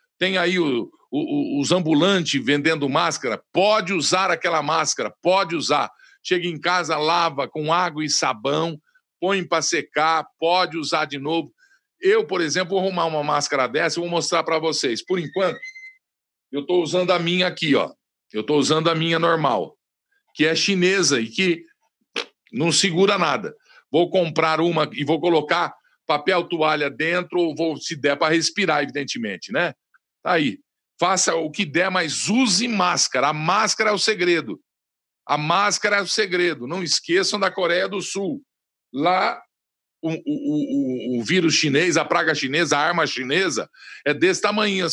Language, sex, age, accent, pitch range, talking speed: Portuguese, male, 50-69, Brazilian, 160-195 Hz, 165 wpm